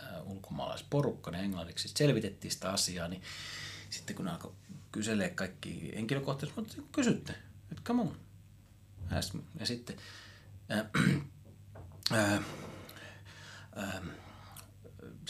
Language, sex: Finnish, male